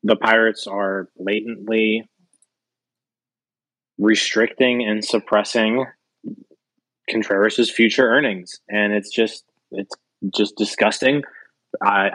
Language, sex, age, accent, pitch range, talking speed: English, male, 20-39, American, 100-120 Hz, 85 wpm